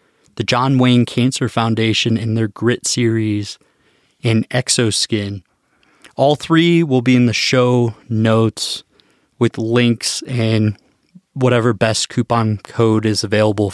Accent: American